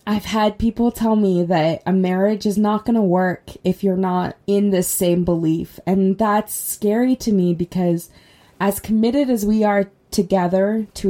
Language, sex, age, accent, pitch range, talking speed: English, female, 20-39, American, 180-205 Hz, 180 wpm